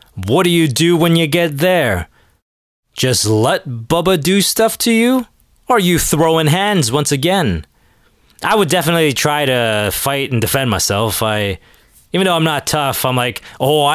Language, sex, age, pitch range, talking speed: English, male, 20-39, 110-165 Hz, 170 wpm